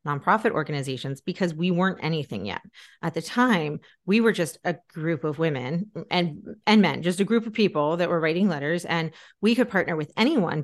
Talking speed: 200 wpm